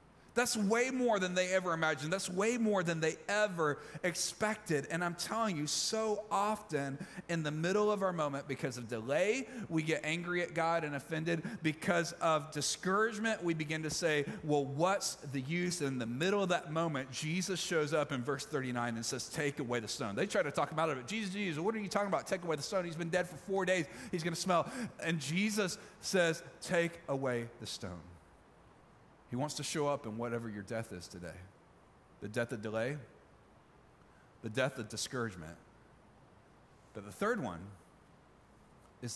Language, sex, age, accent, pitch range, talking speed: English, male, 30-49, American, 135-185 Hz, 190 wpm